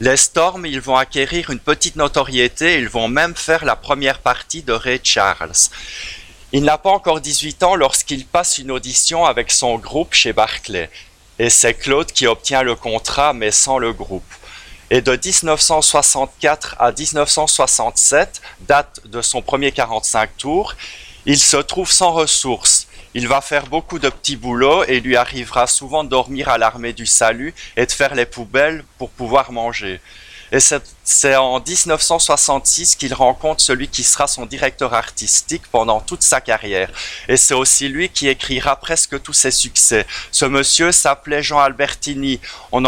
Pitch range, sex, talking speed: 120-150 Hz, male, 165 wpm